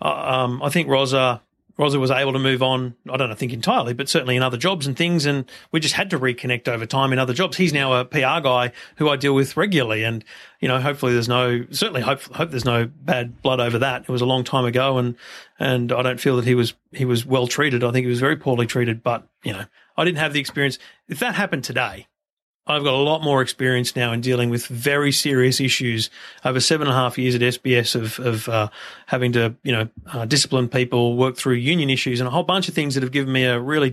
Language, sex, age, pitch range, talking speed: English, male, 40-59, 125-145 Hz, 250 wpm